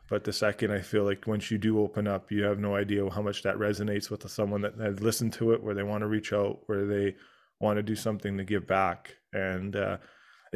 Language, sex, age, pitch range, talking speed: English, male, 20-39, 100-115 Hz, 245 wpm